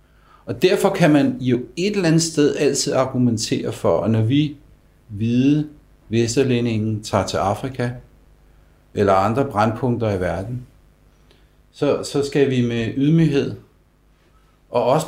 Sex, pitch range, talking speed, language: male, 95-130 Hz, 130 wpm, Danish